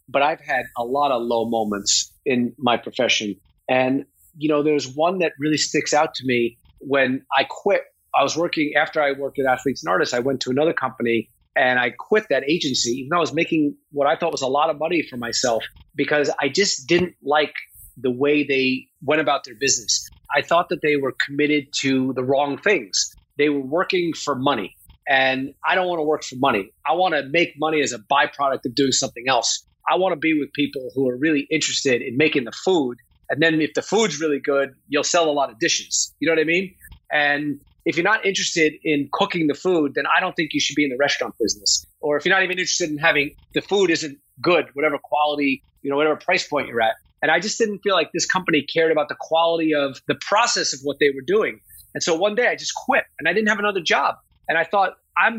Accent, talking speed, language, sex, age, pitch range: American, 235 wpm, English, male, 40-59, 135-165 Hz